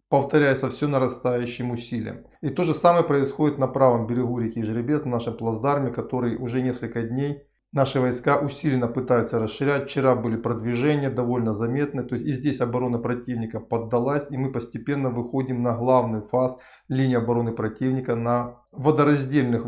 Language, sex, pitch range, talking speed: Russian, male, 120-145 Hz, 150 wpm